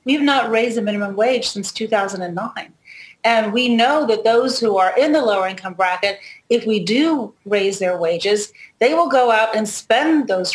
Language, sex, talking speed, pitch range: English, female, 195 wpm, 195-250 Hz